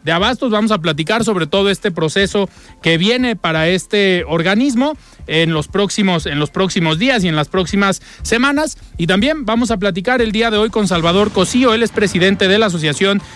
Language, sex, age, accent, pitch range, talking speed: Spanish, male, 40-59, Mexican, 160-215 Hz, 200 wpm